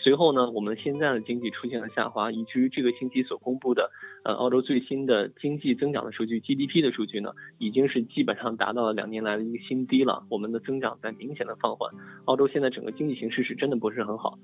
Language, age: Chinese, 20-39